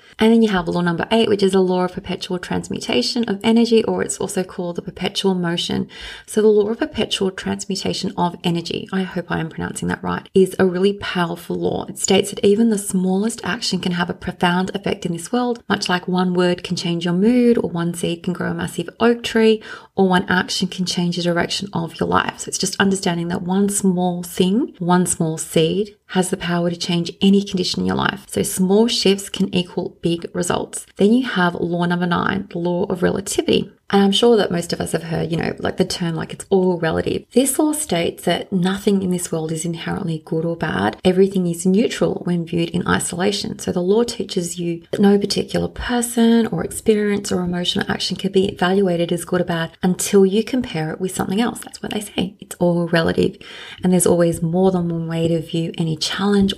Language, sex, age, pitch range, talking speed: English, female, 30-49, 175-205 Hz, 220 wpm